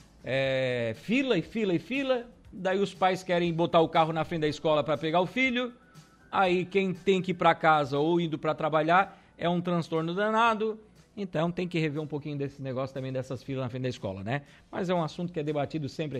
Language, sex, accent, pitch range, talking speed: Portuguese, male, Brazilian, 145-185 Hz, 220 wpm